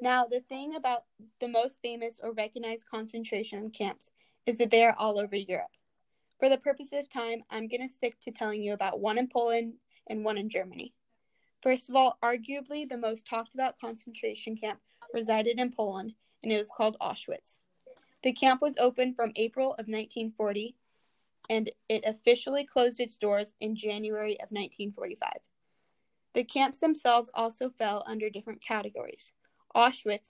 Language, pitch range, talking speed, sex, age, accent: English, 215-250 Hz, 160 wpm, female, 10-29, American